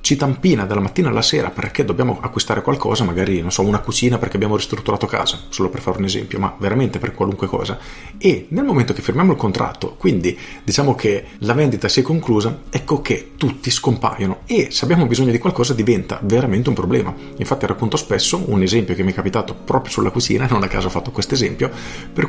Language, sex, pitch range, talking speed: Italian, male, 95-125 Hz, 210 wpm